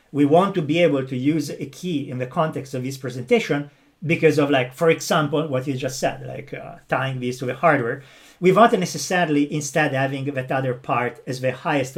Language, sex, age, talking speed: English, male, 40-59, 205 wpm